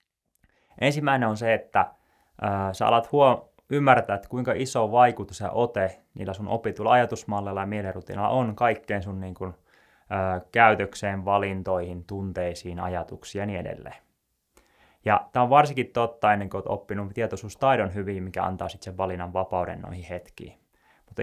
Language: Finnish